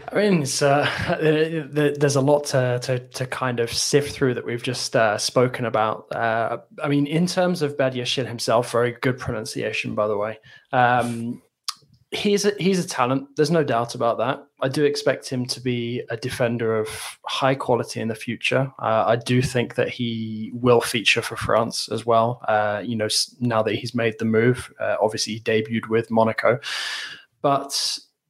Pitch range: 115-140 Hz